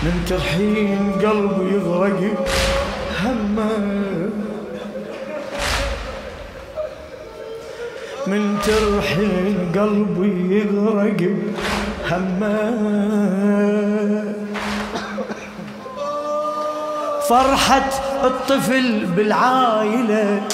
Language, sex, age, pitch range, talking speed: Arabic, male, 30-49, 205-270 Hz, 40 wpm